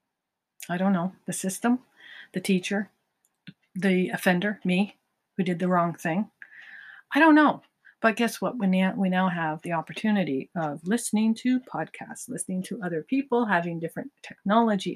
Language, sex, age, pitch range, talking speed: English, female, 50-69, 175-225 Hz, 150 wpm